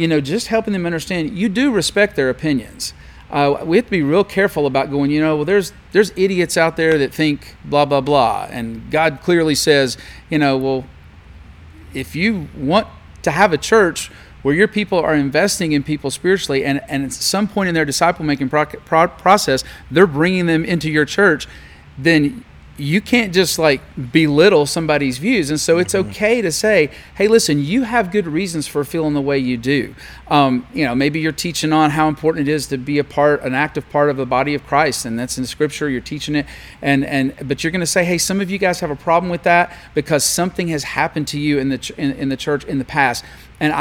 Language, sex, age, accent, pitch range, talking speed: English, male, 40-59, American, 140-170 Hz, 220 wpm